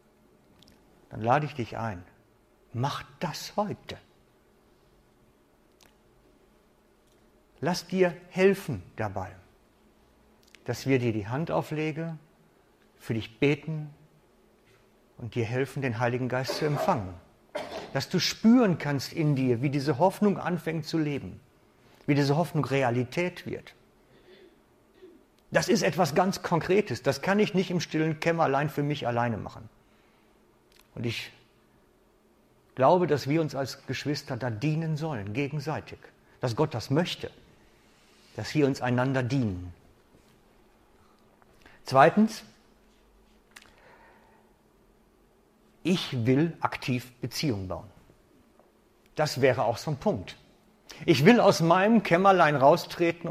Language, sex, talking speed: German, male, 115 wpm